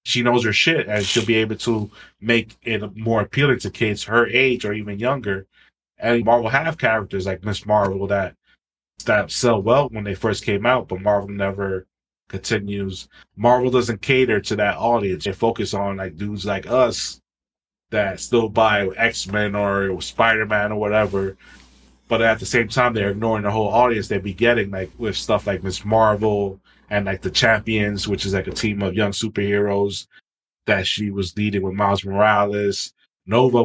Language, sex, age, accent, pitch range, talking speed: English, male, 20-39, American, 100-115 Hz, 180 wpm